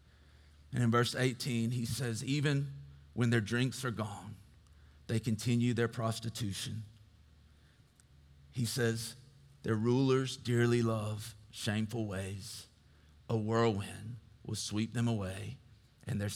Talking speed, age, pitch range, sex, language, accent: 115 wpm, 40-59, 90-115 Hz, male, English, American